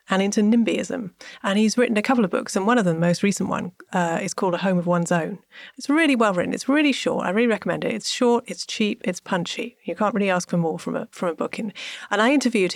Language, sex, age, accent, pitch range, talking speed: English, female, 30-49, British, 175-230 Hz, 275 wpm